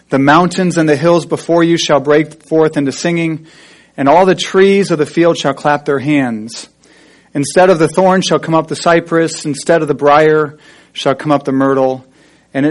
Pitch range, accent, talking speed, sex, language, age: 135-155 Hz, American, 195 wpm, male, English, 40-59